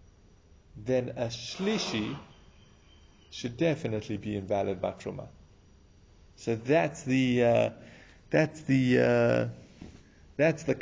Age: 30-49